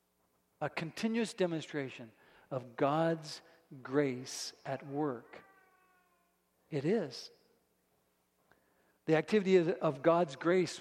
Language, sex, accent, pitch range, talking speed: English, male, American, 150-225 Hz, 85 wpm